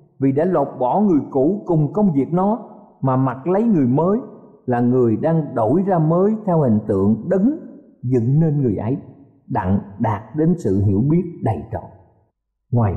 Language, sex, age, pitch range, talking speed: Vietnamese, male, 50-69, 125-195 Hz, 175 wpm